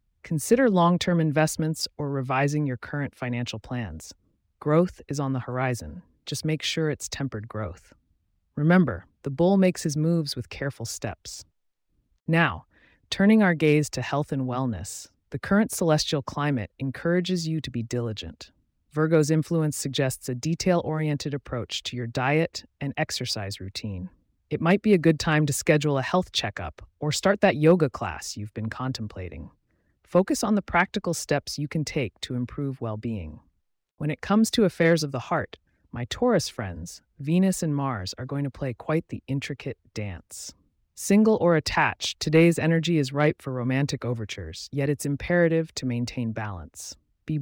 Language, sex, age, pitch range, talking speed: English, female, 30-49, 115-160 Hz, 160 wpm